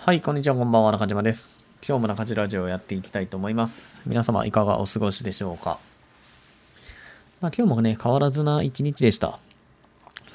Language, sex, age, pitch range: Japanese, male, 20-39, 100-145 Hz